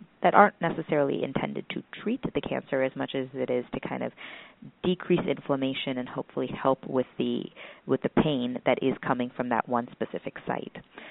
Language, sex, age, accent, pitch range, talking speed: English, female, 30-49, American, 125-150 Hz, 185 wpm